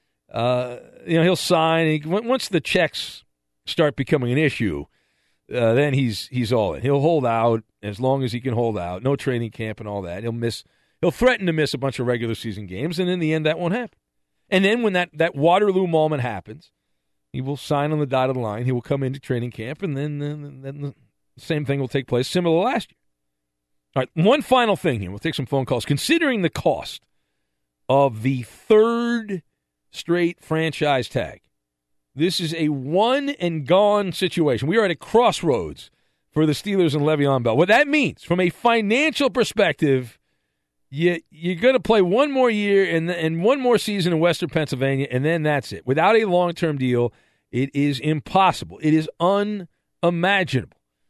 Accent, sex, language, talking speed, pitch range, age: American, male, English, 190 wpm, 120-175 Hz, 50-69